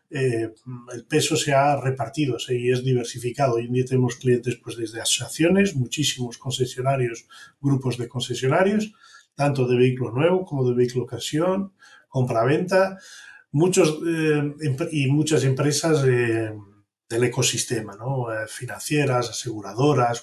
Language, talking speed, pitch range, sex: Spanish, 130 wpm, 125-155 Hz, male